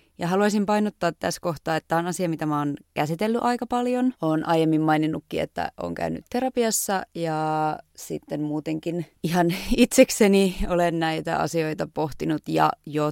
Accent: native